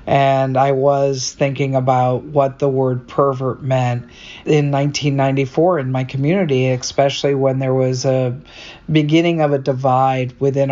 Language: English